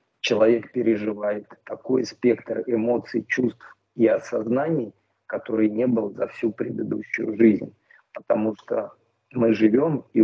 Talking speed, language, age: 115 wpm, Russian, 40-59